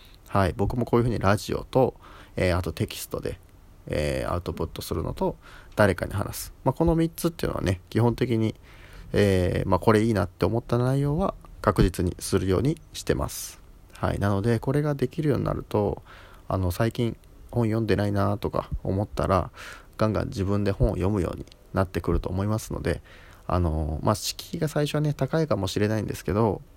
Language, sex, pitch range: Japanese, male, 90-120 Hz